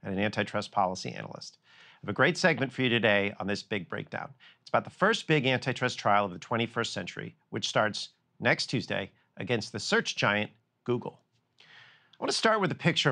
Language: English